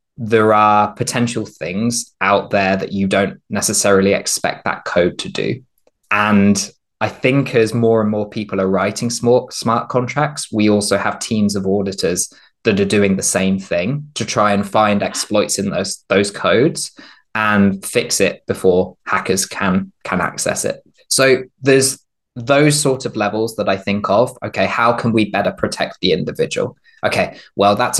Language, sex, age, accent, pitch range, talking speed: Portuguese, male, 20-39, British, 95-120 Hz, 170 wpm